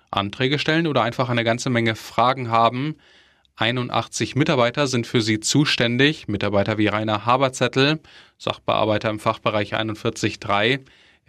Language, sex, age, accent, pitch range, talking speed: German, male, 10-29, German, 110-135 Hz, 120 wpm